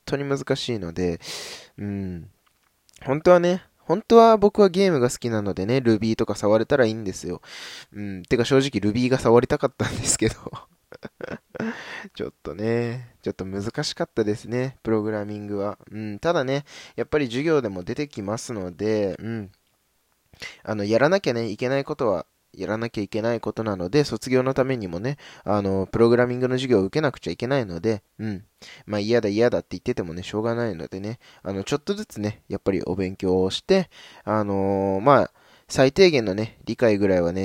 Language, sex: Japanese, male